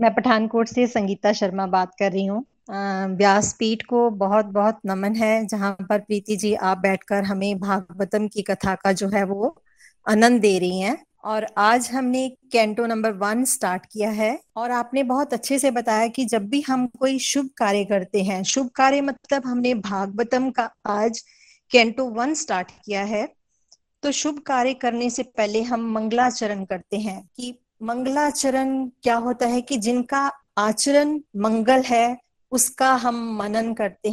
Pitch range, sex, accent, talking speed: 210-255 Hz, female, native, 165 wpm